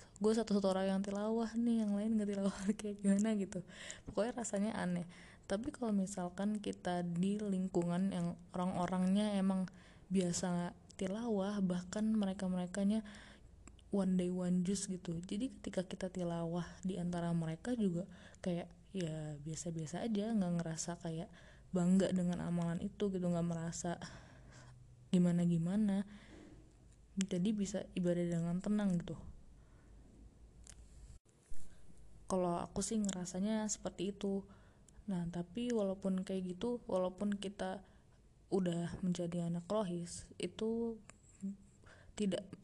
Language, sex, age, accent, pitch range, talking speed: Indonesian, female, 20-39, native, 175-200 Hz, 115 wpm